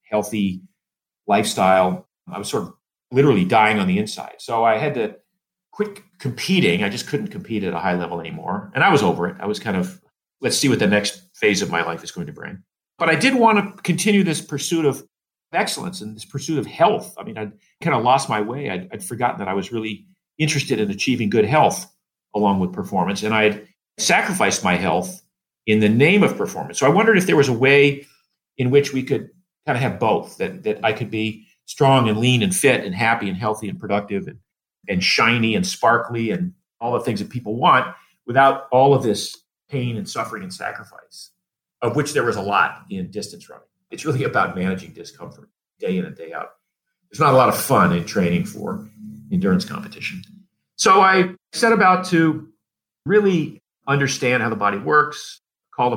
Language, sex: English, male